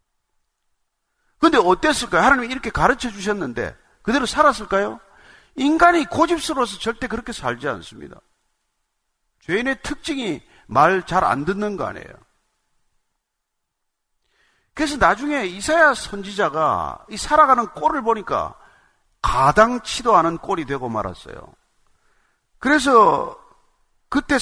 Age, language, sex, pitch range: 40-59, Korean, male, 180-260 Hz